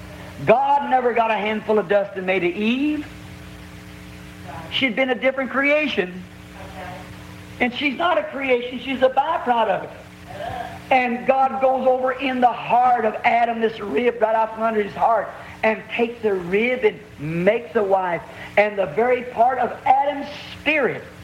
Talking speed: 160 wpm